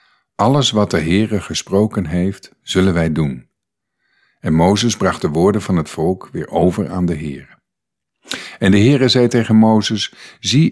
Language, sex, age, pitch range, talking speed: Dutch, male, 50-69, 85-115 Hz, 160 wpm